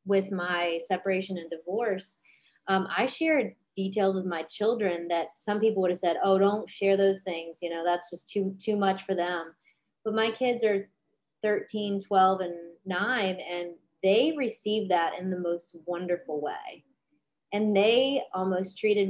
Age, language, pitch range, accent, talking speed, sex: 30-49, English, 180-215 Hz, American, 165 wpm, female